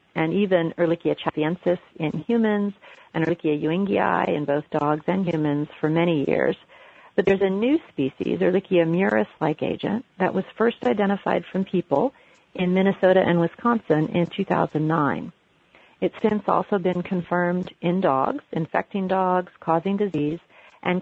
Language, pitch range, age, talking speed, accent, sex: English, 165-210 Hz, 40-59, 140 wpm, American, female